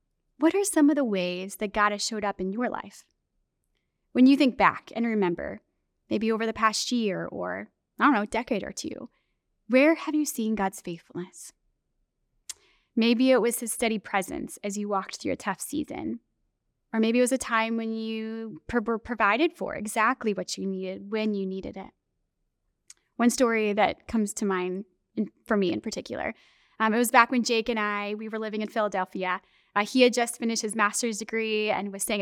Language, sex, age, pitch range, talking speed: English, female, 20-39, 205-260 Hz, 195 wpm